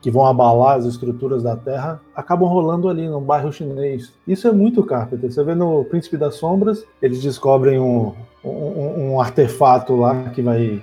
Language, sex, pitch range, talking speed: Portuguese, male, 130-180 Hz, 175 wpm